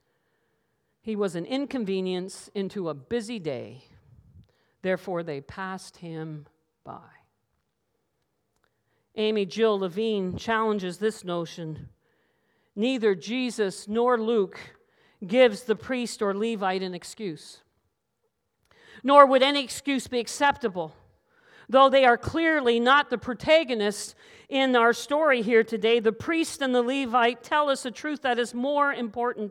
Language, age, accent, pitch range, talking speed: English, 50-69, American, 200-270 Hz, 125 wpm